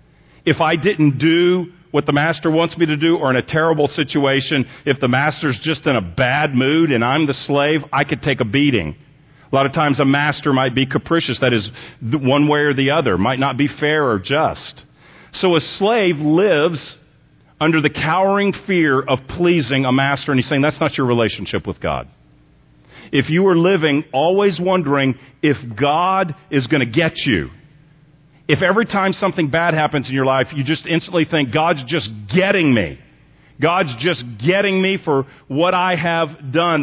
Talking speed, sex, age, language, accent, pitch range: 185 wpm, male, 50-69, English, American, 135-170 Hz